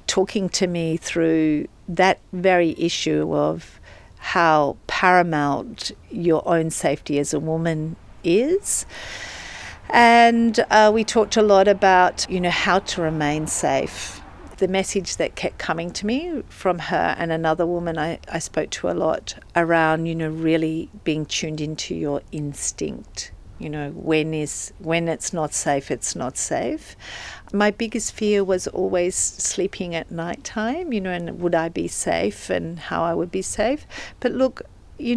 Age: 50-69